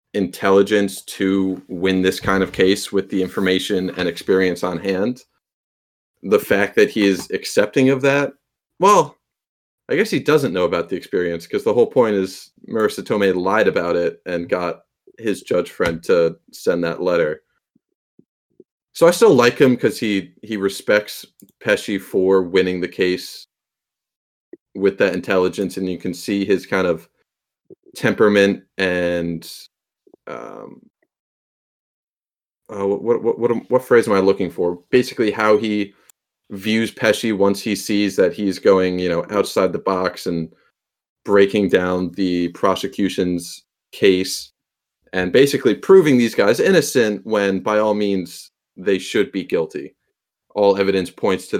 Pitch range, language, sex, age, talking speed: 95-125 Hz, English, male, 30-49, 150 wpm